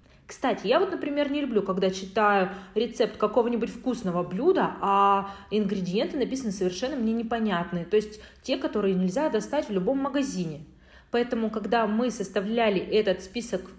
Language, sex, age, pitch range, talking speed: Russian, female, 30-49, 190-260 Hz, 145 wpm